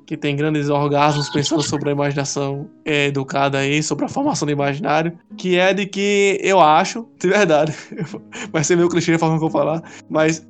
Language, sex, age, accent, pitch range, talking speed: Portuguese, male, 20-39, Brazilian, 150-185 Hz, 195 wpm